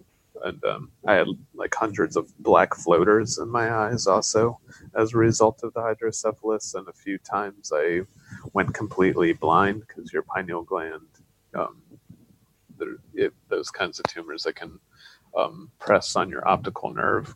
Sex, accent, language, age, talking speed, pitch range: male, American, English, 30-49, 150 wpm, 105-140 Hz